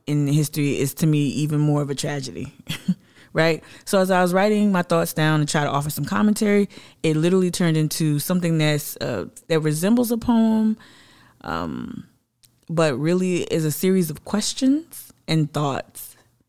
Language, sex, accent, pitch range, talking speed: English, female, American, 145-170 Hz, 165 wpm